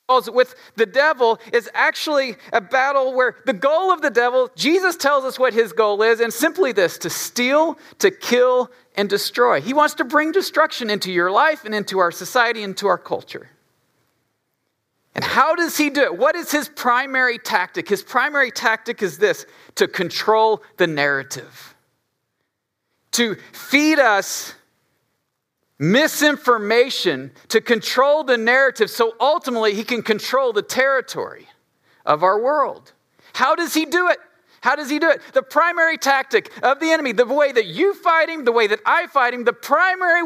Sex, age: male, 40-59